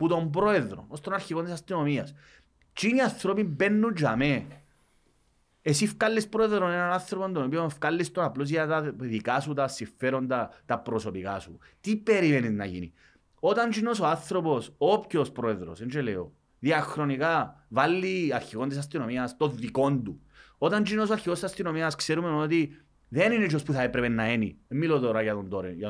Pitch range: 110-165 Hz